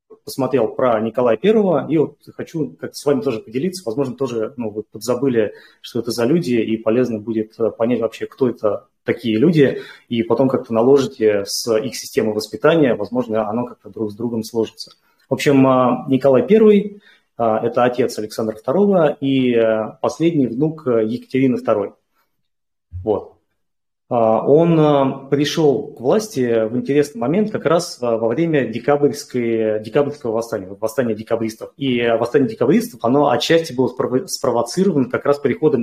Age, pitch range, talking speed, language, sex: 30-49, 115-150 Hz, 135 wpm, Russian, male